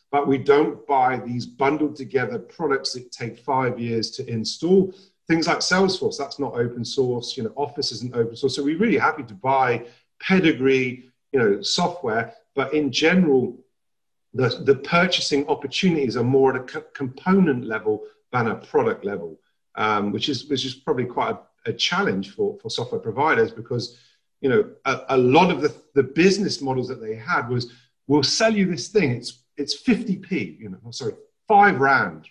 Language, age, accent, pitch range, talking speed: English, 40-59, British, 130-185 Hz, 180 wpm